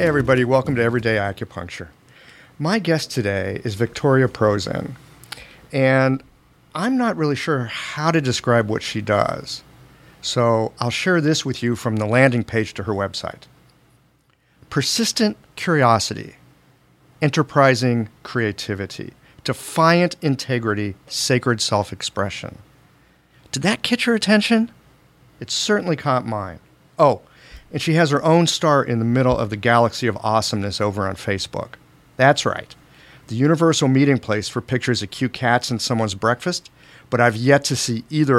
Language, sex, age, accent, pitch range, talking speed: English, male, 50-69, American, 110-145 Hz, 140 wpm